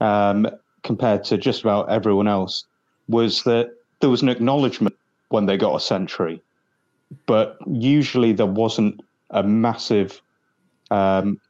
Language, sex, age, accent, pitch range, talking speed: English, male, 30-49, British, 100-120 Hz, 130 wpm